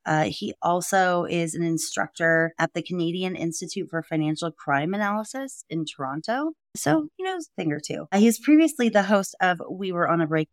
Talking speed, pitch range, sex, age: 195 wpm, 150-195 Hz, female, 30-49